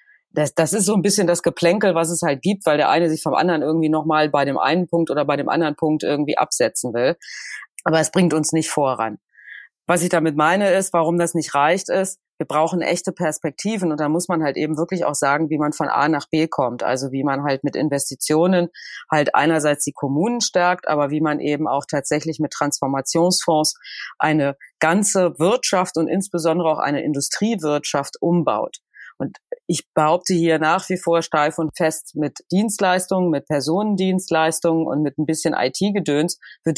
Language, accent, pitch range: German, German, 145-175 Hz